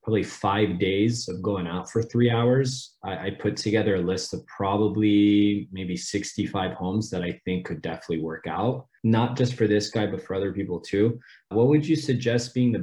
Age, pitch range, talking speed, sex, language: 20-39, 95-115 Hz, 200 wpm, male, English